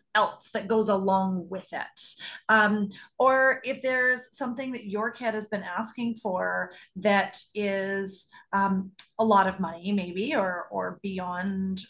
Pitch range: 190-235 Hz